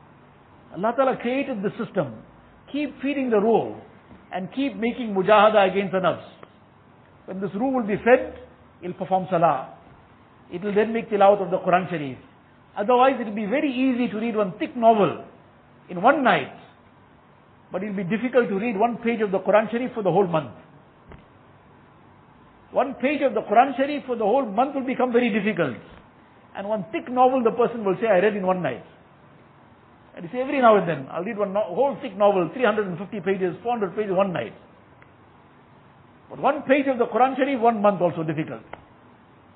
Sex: male